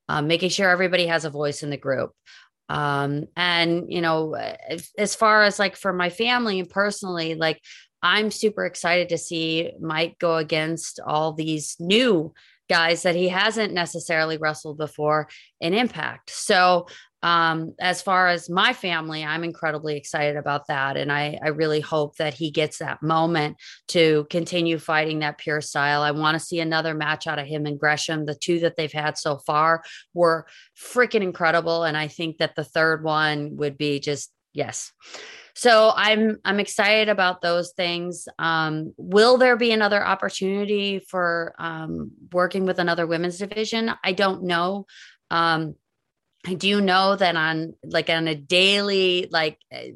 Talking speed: 165 wpm